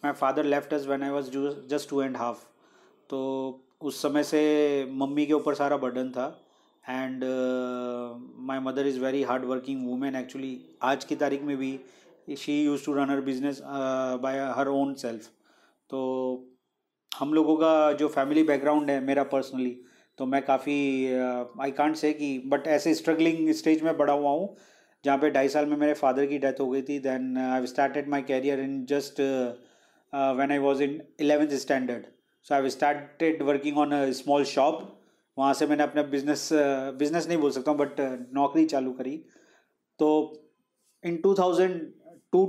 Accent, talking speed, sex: native, 170 wpm, male